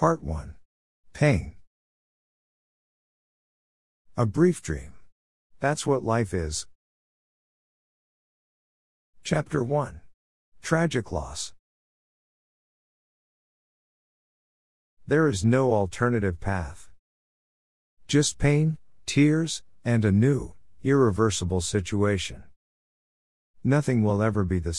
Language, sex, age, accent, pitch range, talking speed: Greek, male, 50-69, American, 80-125 Hz, 75 wpm